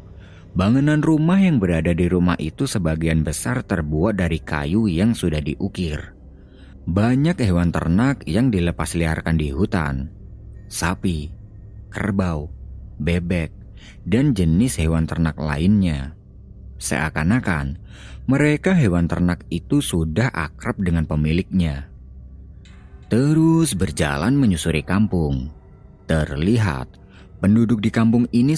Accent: native